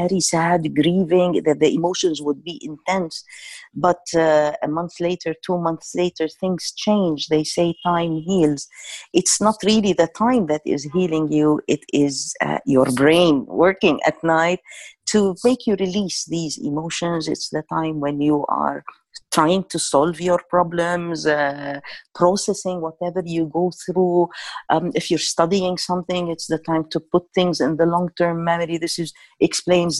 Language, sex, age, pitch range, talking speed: English, female, 50-69, 160-185 Hz, 160 wpm